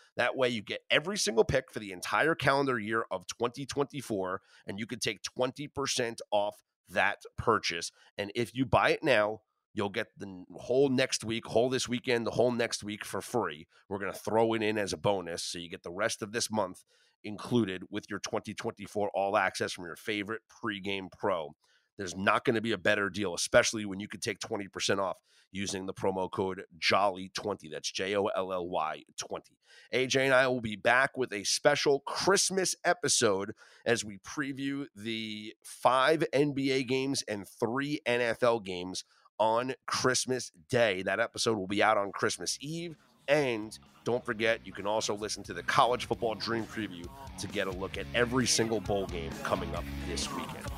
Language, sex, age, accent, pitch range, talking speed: English, male, 30-49, American, 100-130 Hz, 180 wpm